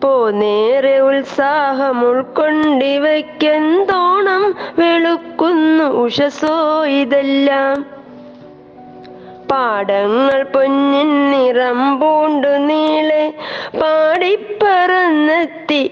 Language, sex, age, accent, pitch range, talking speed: Malayalam, female, 20-39, native, 270-310 Hz, 50 wpm